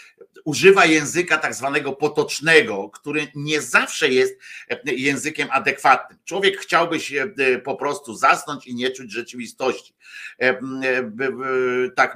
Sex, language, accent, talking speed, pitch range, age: male, Polish, native, 110 wpm, 145-235 Hz, 50-69